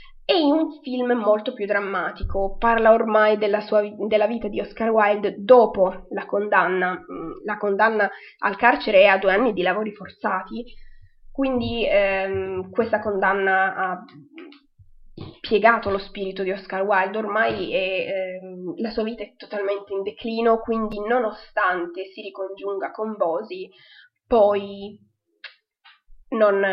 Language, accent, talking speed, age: Italian, native, 130 wpm, 20-39